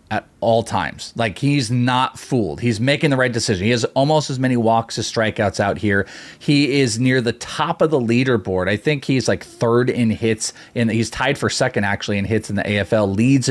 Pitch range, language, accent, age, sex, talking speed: 115-150 Hz, English, American, 30-49, male, 215 wpm